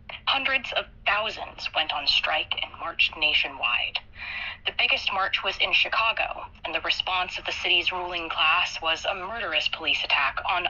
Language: English